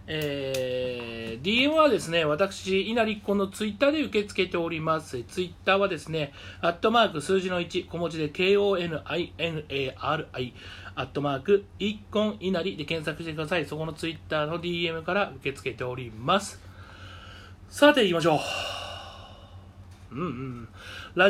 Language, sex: Japanese, male